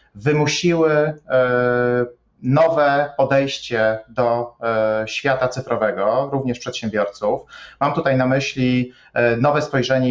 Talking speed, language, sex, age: 85 wpm, Polish, male, 30-49